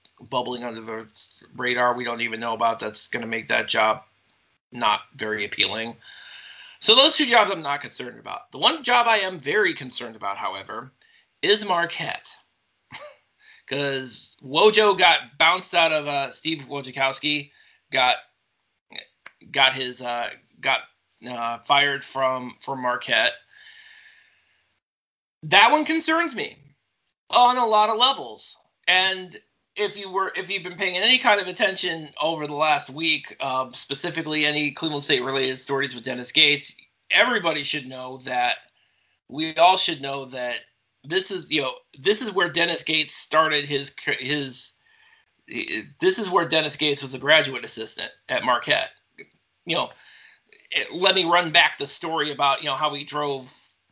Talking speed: 155 wpm